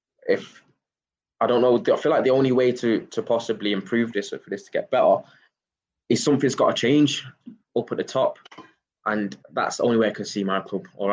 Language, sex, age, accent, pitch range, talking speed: English, male, 10-29, British, 95-115 Hz, 220 wpm